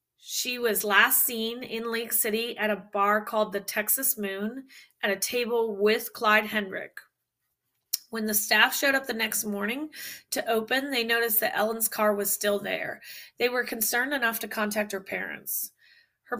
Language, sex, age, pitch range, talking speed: English, female, 20-39, 205-230 Hz, 170 wpm